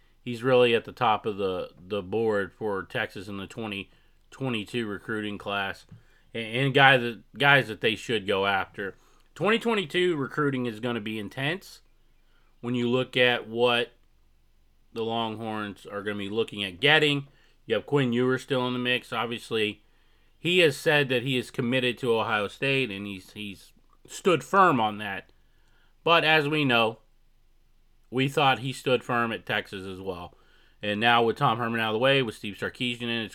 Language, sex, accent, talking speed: English, male, American, 180 wpm